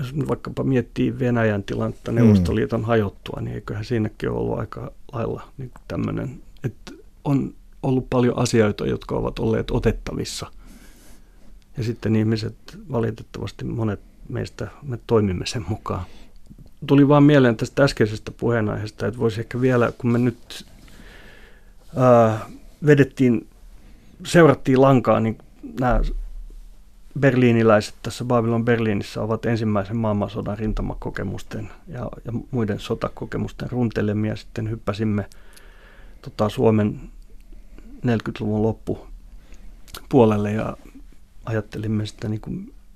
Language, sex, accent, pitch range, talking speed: Finnish, male, native, 105-120 Hz, 105 wpm